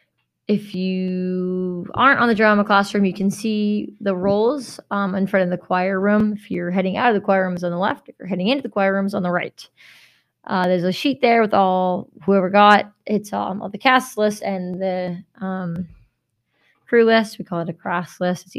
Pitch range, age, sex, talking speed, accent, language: 185-220 Hz, 20-39, female, 220 wpm, American, English